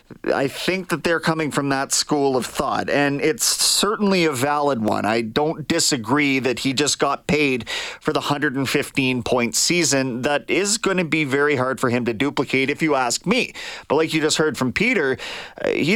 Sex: male